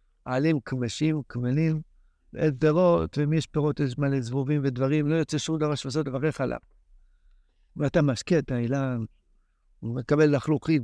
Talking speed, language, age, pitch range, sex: 140 wpm, Hebrew, 60-79, 130-165 Hz, male